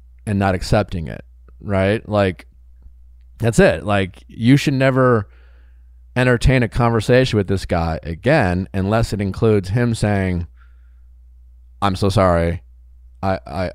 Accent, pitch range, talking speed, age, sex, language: American, 90-110 Hz, 120 wpm, 30-49, male, English